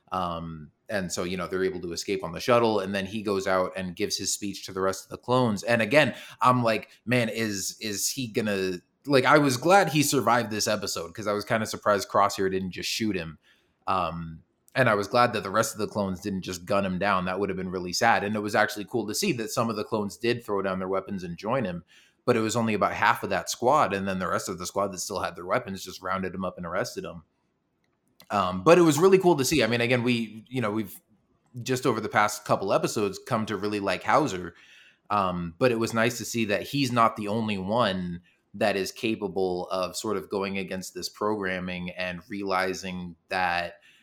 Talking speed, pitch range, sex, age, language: 240 wpm, 95-115 Hz, male, 20-39, English